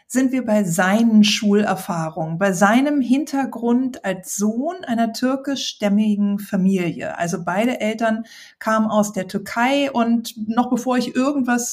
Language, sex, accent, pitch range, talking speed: German, female, German, 200-240 Hz, 130 wpm